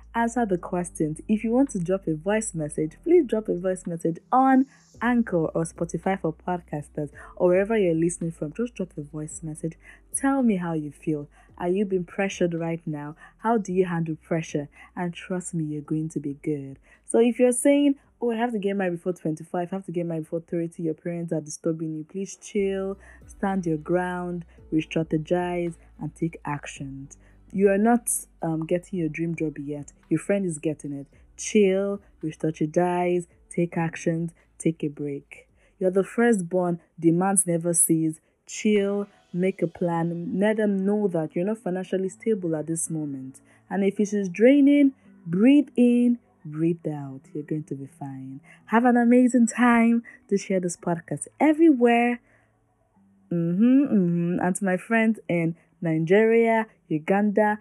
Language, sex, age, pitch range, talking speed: English, female, 20-39, 160-205 Hz, 175 wpm